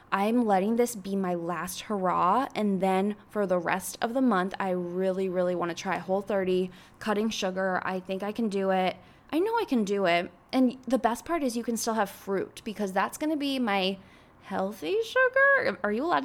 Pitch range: 195-270 Hz